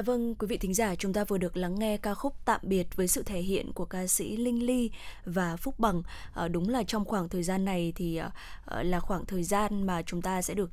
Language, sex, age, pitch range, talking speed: Vietnamese, female, 10-29, 180-225 Hz, 245 wpm